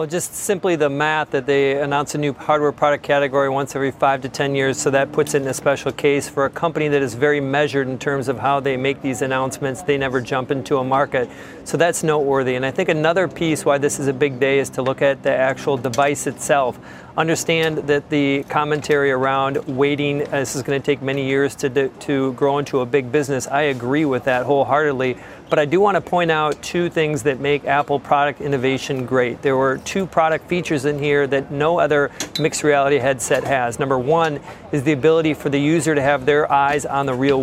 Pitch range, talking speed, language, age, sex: 135-150 Hz, 225 wpm, English, 40-59, male